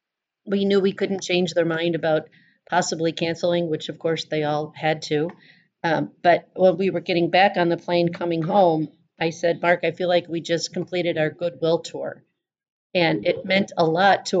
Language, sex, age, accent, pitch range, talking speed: English, female, 40-59, American, 160-180 Hz, 195 wpm